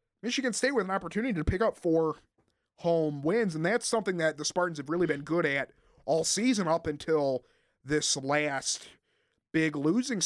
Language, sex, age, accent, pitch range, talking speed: English, male, 30-49, American, 140-180 Hz, 175 wpm